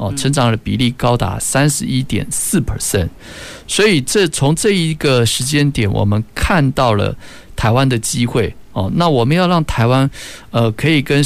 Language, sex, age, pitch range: Chinese, male, 50-69, 105-135 Hz